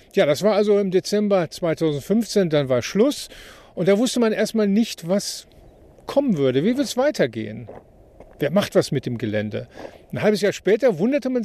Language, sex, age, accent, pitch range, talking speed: German, male, 50-69, German, 150-205 Hz, 185 wpm